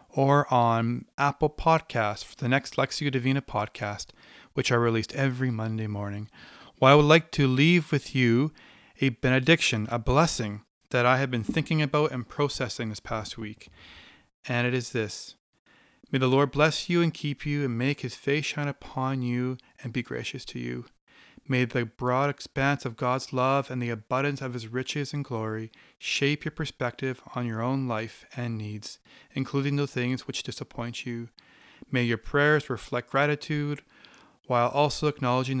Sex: male